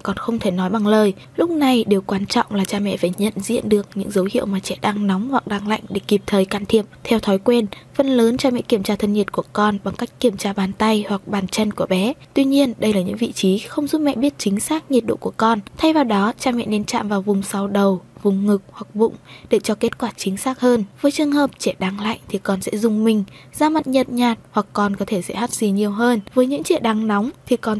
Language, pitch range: Vietnamese, 200-240 Hz